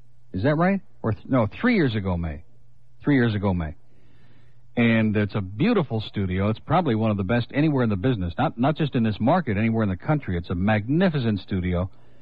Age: 60-79